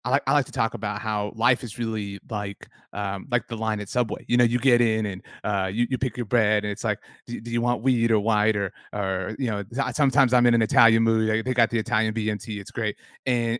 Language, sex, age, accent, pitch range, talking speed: English, male, 30-49, American, 110-135 Hz, 250 wpm